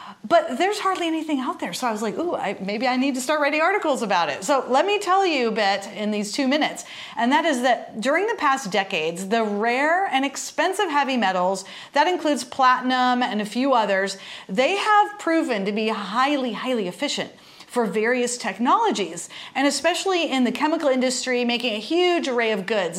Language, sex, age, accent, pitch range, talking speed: English, female, 40-59, American, 215-295 Hz, 195 wpm